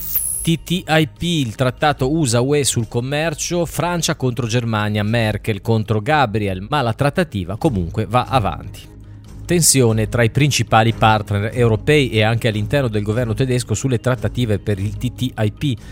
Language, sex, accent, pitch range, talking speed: Italian, male, native, 105-135 Hz, 130 wpm